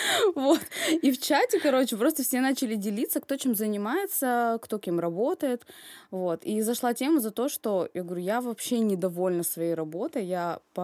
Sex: female